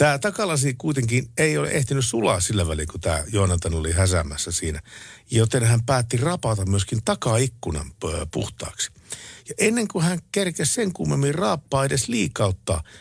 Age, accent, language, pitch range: 50-69, native, Finnish, 95-140 Hz